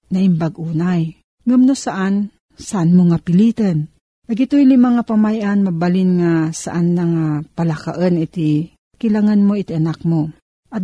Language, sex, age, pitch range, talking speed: Filipino, female, 50-69, 165-205 Hz, 140 wpm